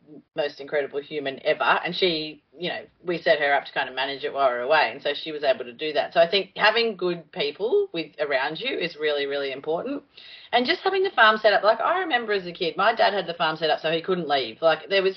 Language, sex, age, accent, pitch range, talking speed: English, female, 30-49, Australian, 165-225 Hz, 275 wpm